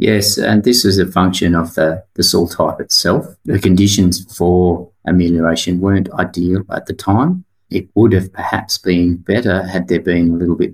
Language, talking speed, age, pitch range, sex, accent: English, 185 wpm, 30-49, 85-100 Hz, male, Australian